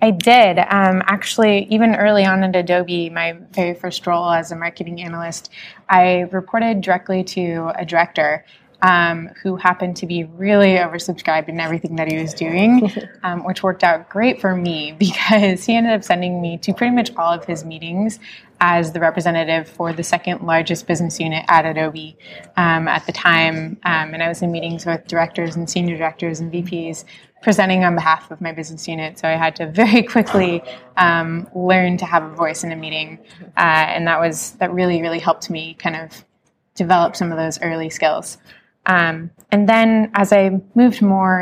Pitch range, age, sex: 165-190 Hz, 20-39, female